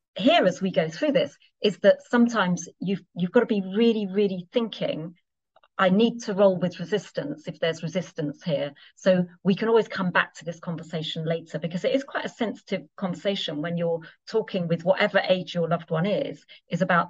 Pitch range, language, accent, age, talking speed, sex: 170-215 Hz, English, British, 40-59, 195 wpm, female